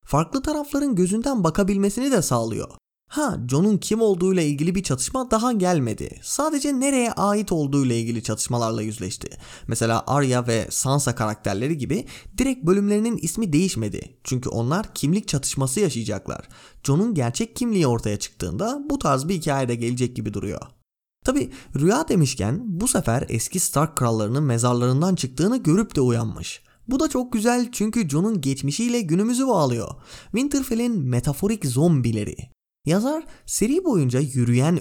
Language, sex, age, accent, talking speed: Turkish, male, 30-49, native, 135 wpm